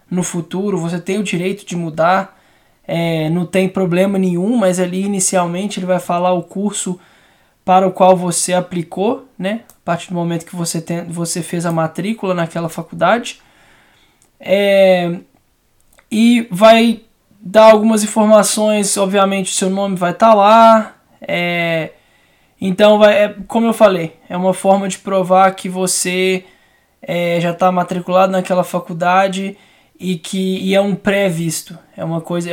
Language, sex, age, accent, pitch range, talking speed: Portuguese, male, 20-39, Brazilian, 175-200 Hz, 130 wpm